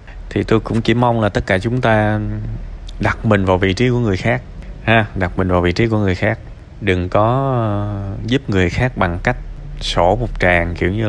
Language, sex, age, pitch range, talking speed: Vietnamese, male, 20-39, 95-115 Hz, 215 wpm